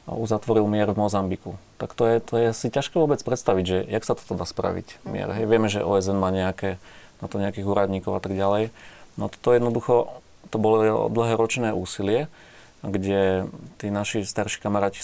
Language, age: Slovak, 30-49